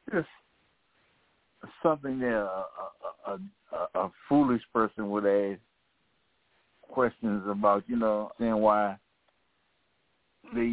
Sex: male